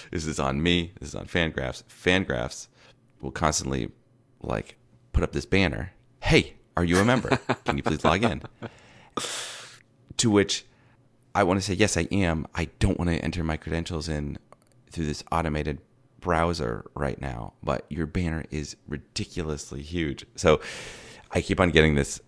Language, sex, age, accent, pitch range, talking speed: English, male, 30-49, American, 70-100 Hz, 165 wpm